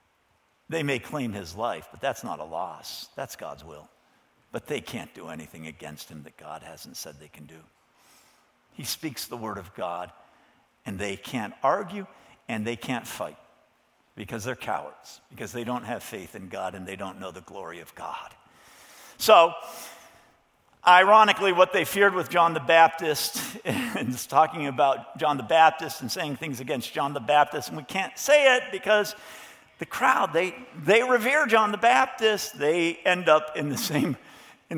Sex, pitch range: male, 130-195 Hz